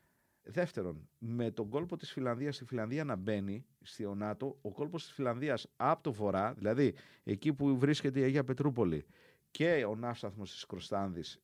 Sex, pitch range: male, 110-160 Hz